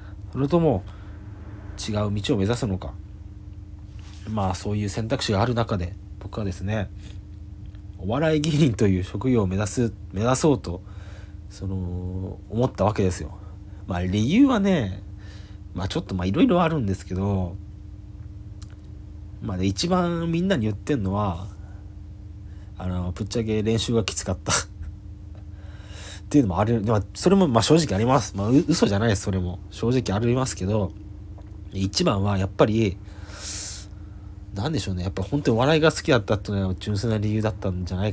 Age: 40-59